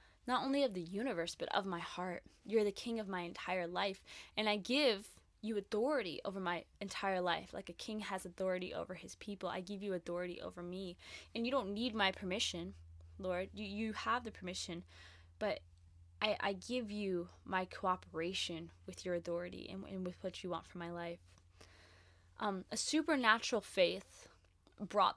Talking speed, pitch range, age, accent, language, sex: 180 wpm, 175-215 Hz, 10-29, American, English, female